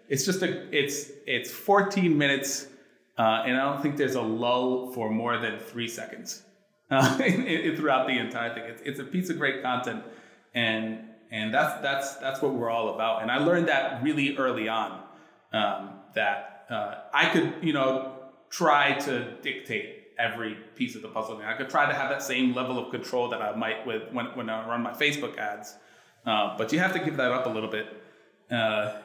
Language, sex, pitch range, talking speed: English, male, 110-140 Hz, 200 wpm